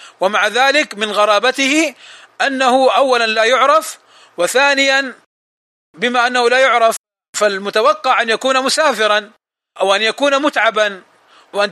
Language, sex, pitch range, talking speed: Arabic, male, 205-255 Hz, 115 wpm